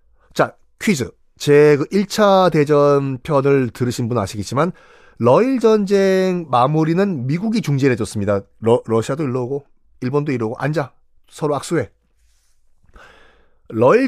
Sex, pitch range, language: male, 120-190 Hz, Korean